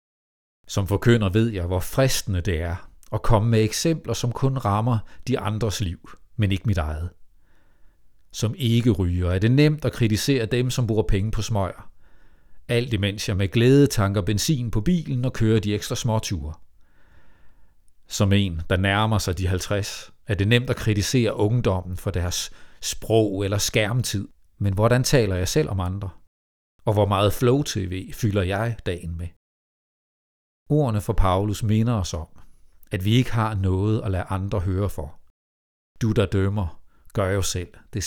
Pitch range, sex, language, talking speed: 90-115 Hz, male, Danish, 165 wpm